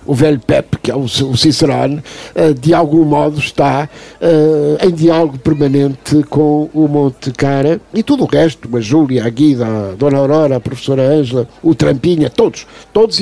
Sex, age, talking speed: male, 60-79, 165 wpm